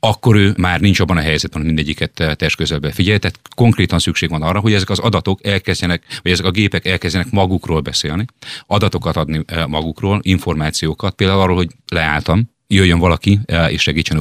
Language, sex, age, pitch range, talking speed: Hungarian, male, 30-49, 80-95 Hz, 175 wpm